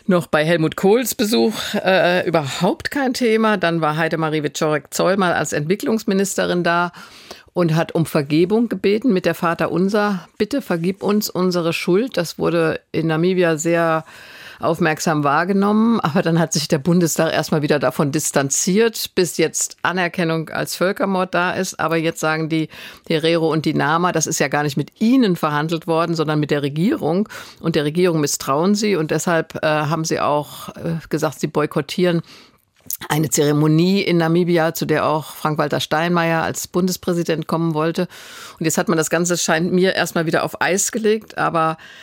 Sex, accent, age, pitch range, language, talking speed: female, German, 50-69, 155-180 Hz, German, 170 wpm